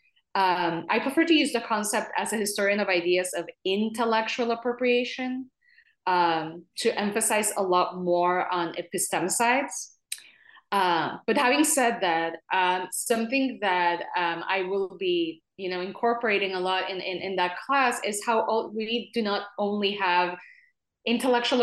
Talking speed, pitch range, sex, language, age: 150 wpm, 185-235 Hz, female, English, 20-39